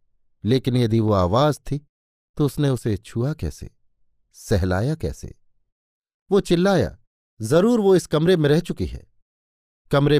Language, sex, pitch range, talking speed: Hindi, male, 115-150 Hz, 135 wpm